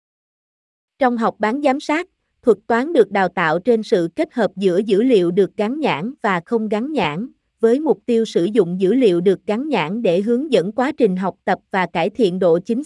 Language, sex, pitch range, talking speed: Vietnamese, female, 195-245 Hz, 215 wpm